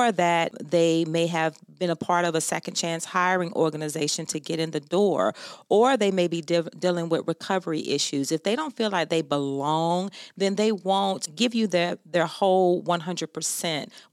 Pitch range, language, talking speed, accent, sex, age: 160-200 Hz, English, 180 wpm, American, female, 40-59